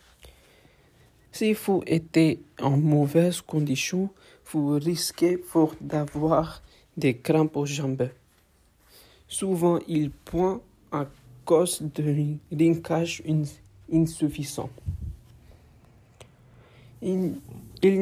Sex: male